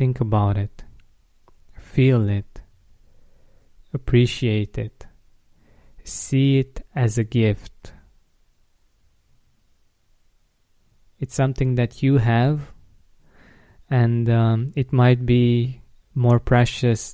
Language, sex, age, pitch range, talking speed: English, male, 20-39, 105-120 Hz, 85 wpm